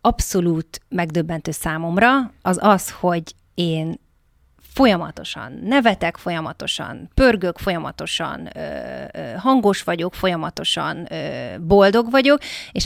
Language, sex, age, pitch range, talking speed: Hungarian, female, 30-49, 165-195 Hz, 85 wpm